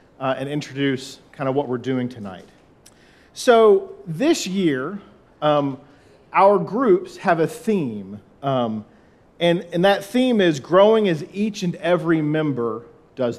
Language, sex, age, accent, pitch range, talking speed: English, male, 40-59, American, 135-195 Hz, 140 wpm